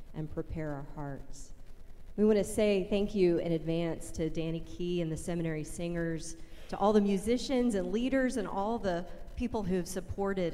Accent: American